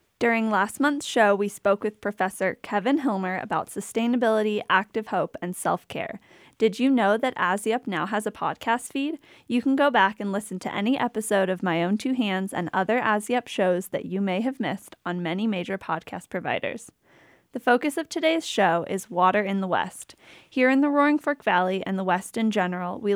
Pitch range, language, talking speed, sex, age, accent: 190-235 Hz, English, 195 wpm, female, 10-29, American